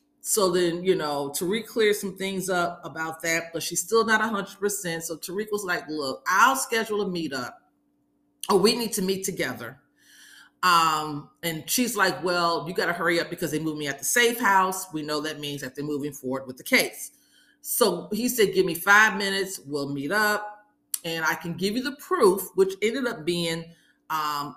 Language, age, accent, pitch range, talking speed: English, 40-59, American, 155-200 Hz, 205 wpm